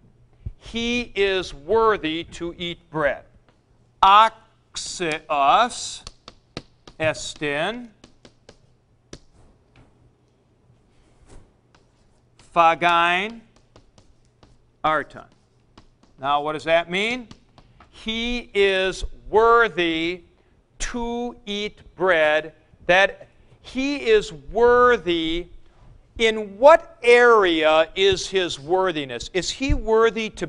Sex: male